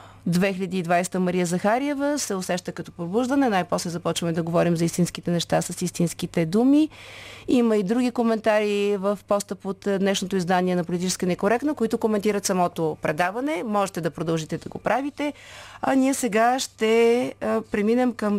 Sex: female